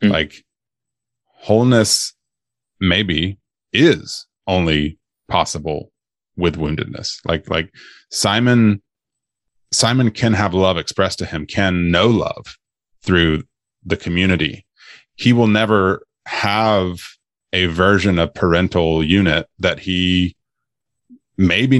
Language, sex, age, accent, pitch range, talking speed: English, male, 30-49, American, 80-105 Hz, 100 wpm